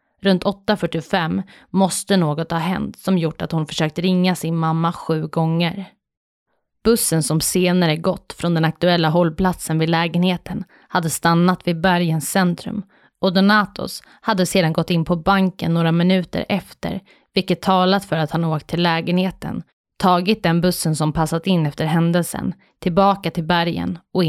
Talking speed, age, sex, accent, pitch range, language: 155 wpm, 20-39, female, native, 165-190 Hz, Swedish